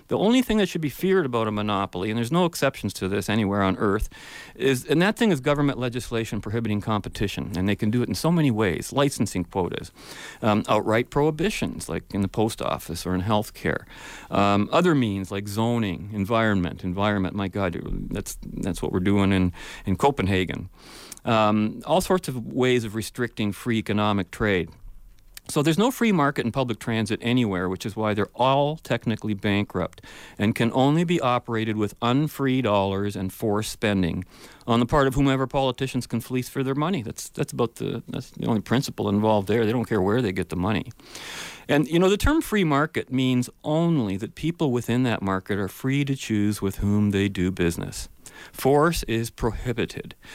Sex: male